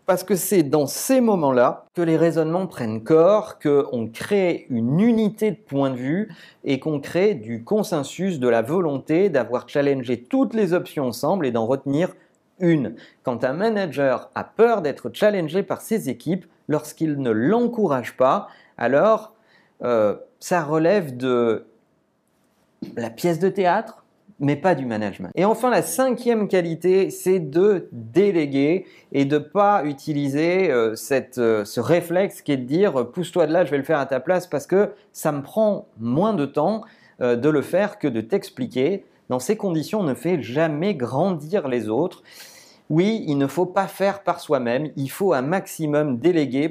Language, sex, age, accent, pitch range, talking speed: French, male, 40-59, French, 140-195 Hz, 175 wpm